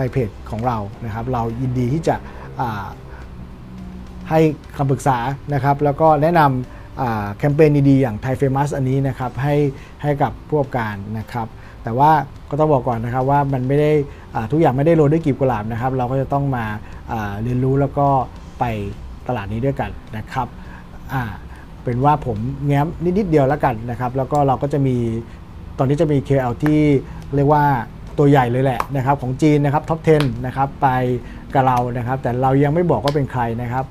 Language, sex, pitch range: Thai, male, 115-145 Hz